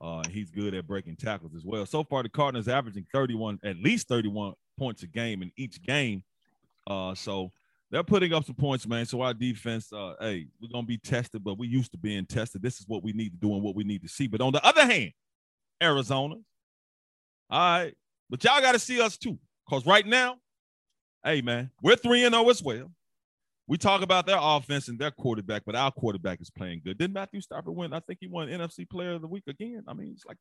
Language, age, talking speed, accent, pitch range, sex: English, 30-49, 230 wpm, American, 115-180 Hz, male